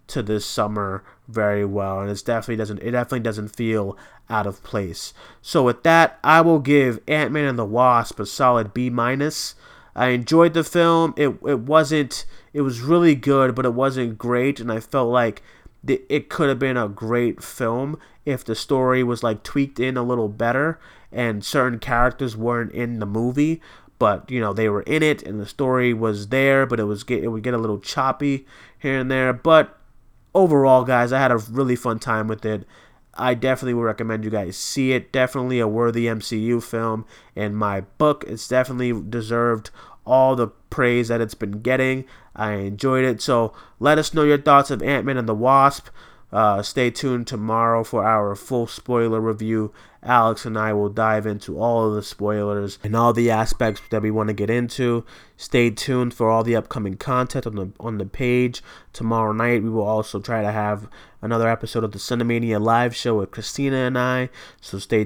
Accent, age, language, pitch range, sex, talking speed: American, 30-49, English, 110-130 Hz, male, 195 wpm